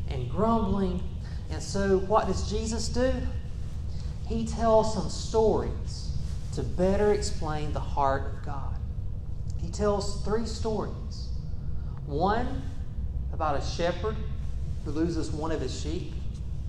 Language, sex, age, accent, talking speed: English, male, 40-59, American, 120 wpm